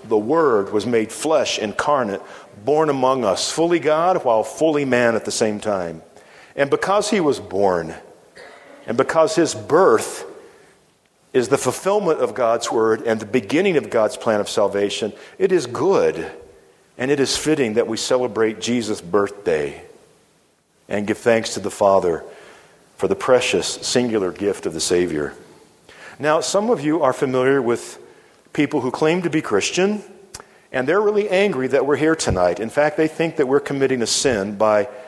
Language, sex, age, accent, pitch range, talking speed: English, male, 50-69, American, 110-155 Hz, 170 wpm